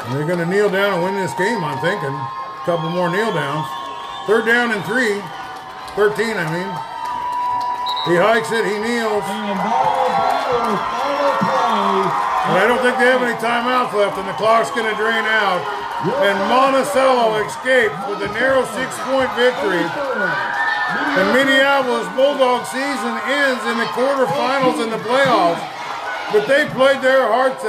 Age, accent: 50-69, American